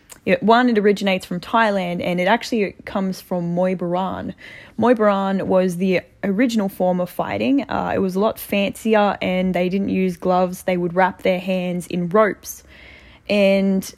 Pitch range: 175-195 Hz